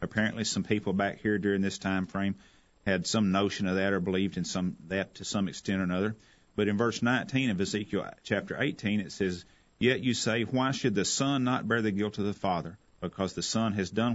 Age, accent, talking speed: 40-59, American, 225 wpm